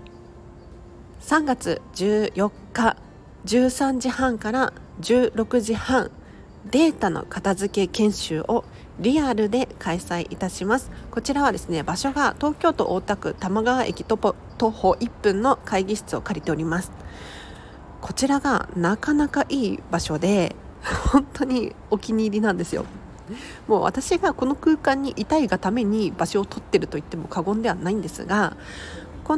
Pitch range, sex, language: 190-260 Hz, female, Japanese